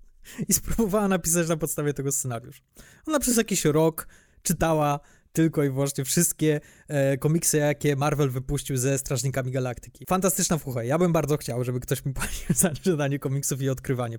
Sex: male